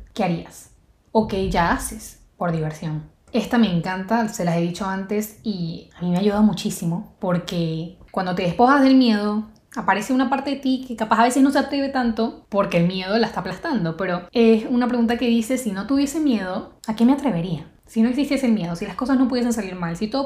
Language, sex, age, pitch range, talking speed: Spanish, female, 10-29, 185-260 Hz, 220 wpm